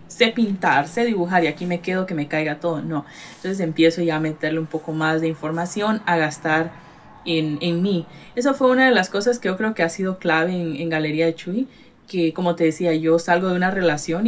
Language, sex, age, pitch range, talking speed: Spanish, female, 10-29, 165-200 Hz, 230 wpm